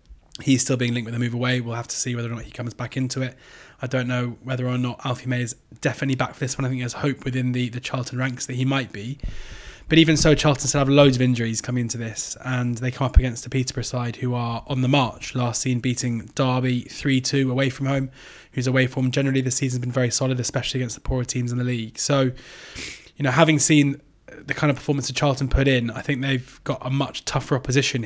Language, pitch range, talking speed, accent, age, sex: English, 120-135 Hz, 260 wpm, British, 20-39, male